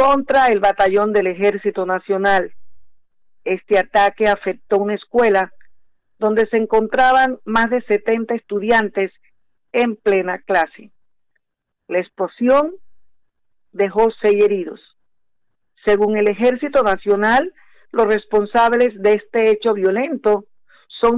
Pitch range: 195-230 Hz